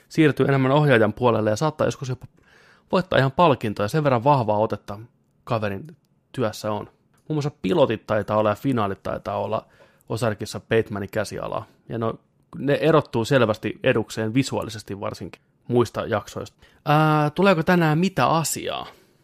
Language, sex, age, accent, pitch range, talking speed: Finnish, male, 30-49, native, 105-140 Hz, 135 wpm